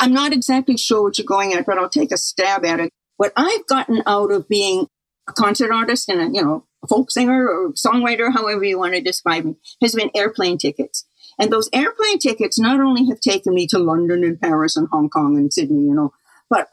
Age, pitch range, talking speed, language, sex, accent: 50-69, 195-275 Hz, 220 wpm, English, female, American